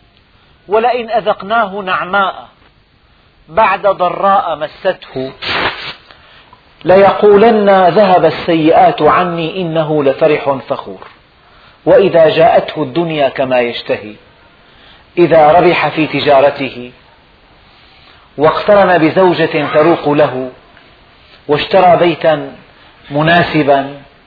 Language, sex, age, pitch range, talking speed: Arabic, male, 40-59, 150-180 Hz, 70 wpm